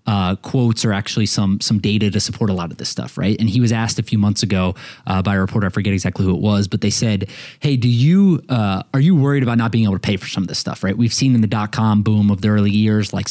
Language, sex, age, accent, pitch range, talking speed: English, male, 20-39, American, 105-125 Hz, 300 wpm